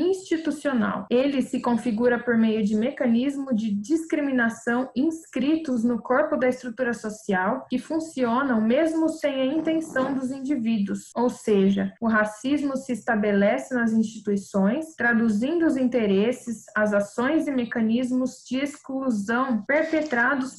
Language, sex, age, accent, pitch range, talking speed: Portuguese, female, 20-39, Brazilian, 225-275 Hz, 120 wpm